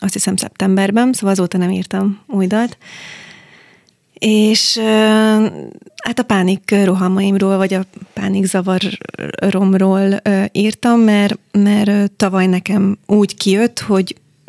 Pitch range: 185-205 Hz